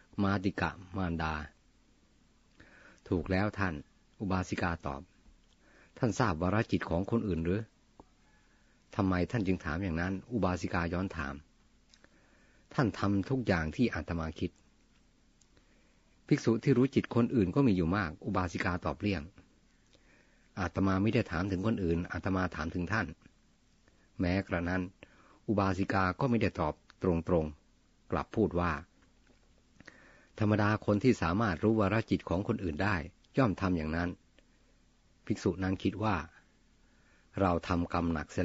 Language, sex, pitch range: Thai, male, 85-105 Hz